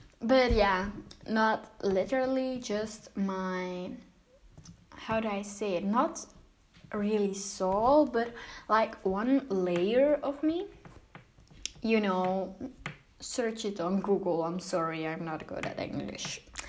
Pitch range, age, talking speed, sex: 200-270 Hz, 10-29, 120 wpm, female